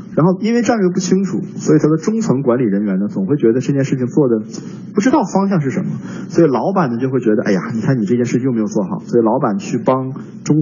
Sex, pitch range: male, 145-200 Hz